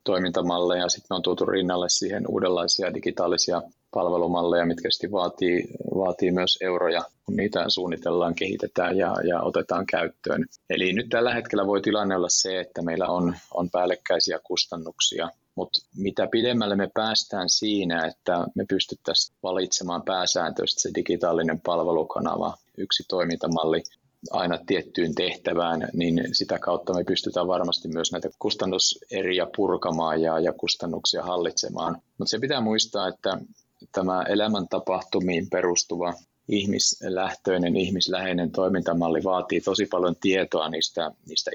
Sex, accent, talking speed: male, native, 125 wpm